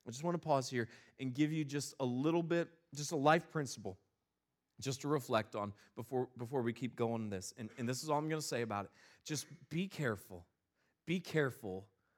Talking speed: 215 wpm